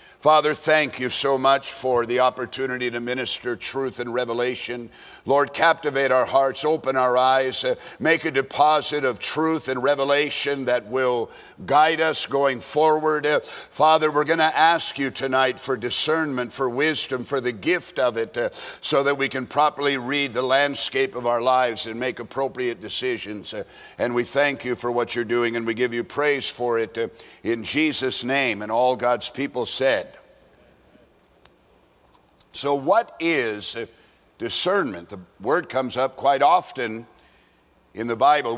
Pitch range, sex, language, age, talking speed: 125-165 Hz, male, English, 50-69, 165 wpm